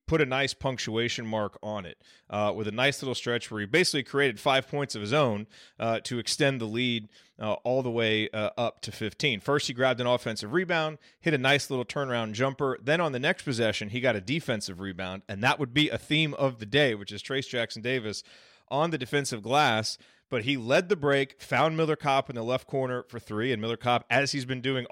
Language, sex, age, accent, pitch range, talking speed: English, male, 30-49, American, 115-150 Hz, 230 wpm